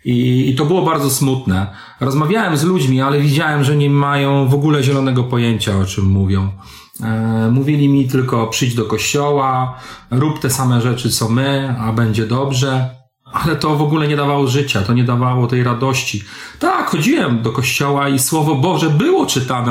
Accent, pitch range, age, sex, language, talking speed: native, 120-150 Hz, 40-59, male, Polish, 175 wpm